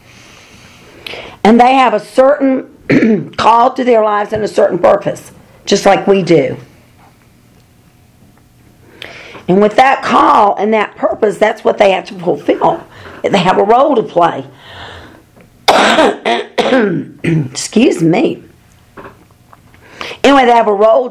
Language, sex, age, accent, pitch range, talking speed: English, female, 50-69, American, 170-220 Hz, 120 wpm